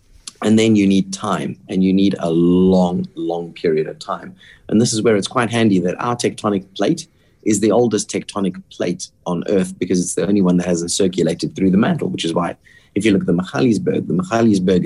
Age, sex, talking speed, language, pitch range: 30-49, male, 220 wpm, English, 90-110 Hz